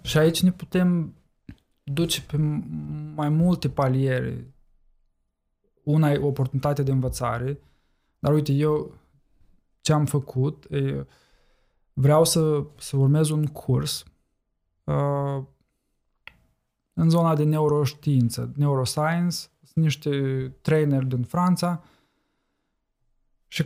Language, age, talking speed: Romanian, 20-39, 95 wpm